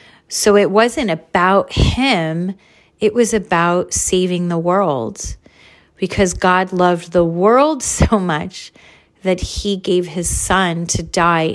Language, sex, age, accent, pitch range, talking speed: English, female, 30-49, American, 170-210 Hz, 130 wpm